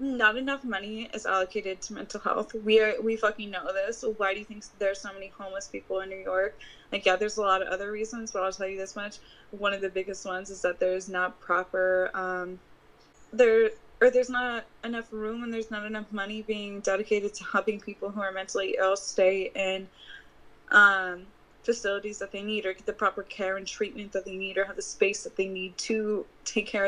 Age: 20-39